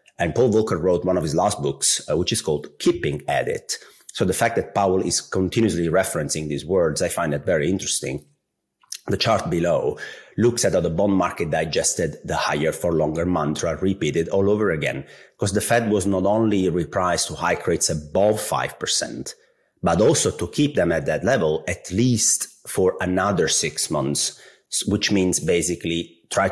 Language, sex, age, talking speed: English, male, 30-49, 180 wpm